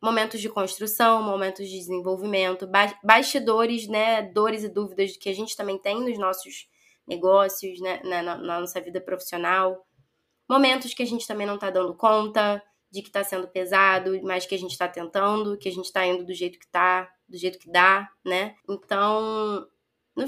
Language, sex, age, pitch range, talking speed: Portuguese, female, 20-39, 190-245 Hz, 180 wpm